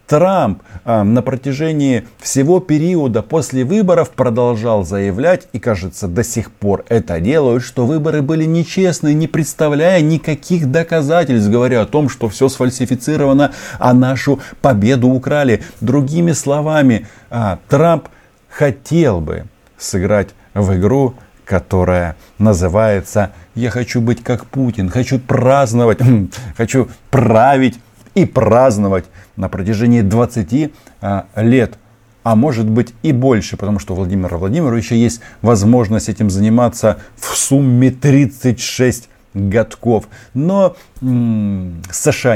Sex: male